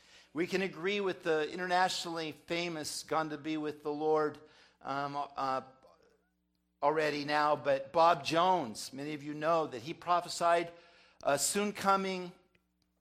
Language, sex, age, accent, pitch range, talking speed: English, male, 50-69, American, 160-205 Hz, 140 wpm